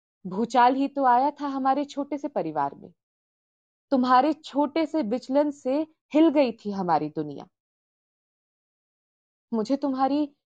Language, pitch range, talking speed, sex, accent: Hindi, 195-275 Hz, 125 wpm, female, native